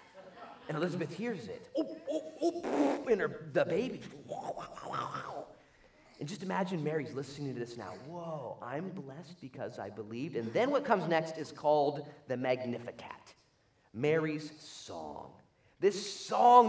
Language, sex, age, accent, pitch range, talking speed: English, male, 30-49, American, 145-215 Hz, 120 wpm